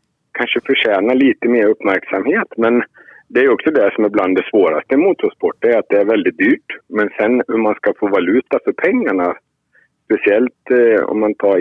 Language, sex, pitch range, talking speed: Swedish, male, 105-140 Hz, 190 wpm